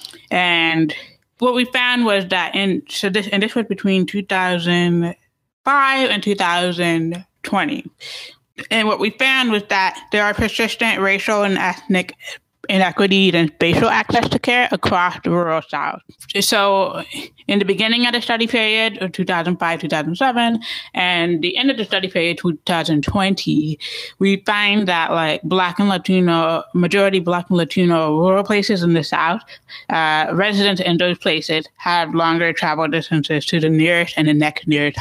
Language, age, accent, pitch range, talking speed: English, 20-39, American, 165-205 Hz, 160 wpm